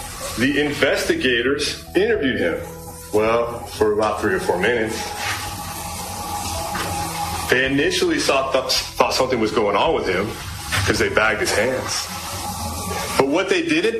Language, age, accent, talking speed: English, 30-49, American, 130 wpm